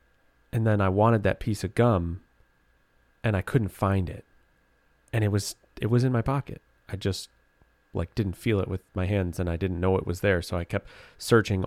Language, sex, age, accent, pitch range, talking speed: English, male, 30-49, American, 90-120 Hz, 210 wpm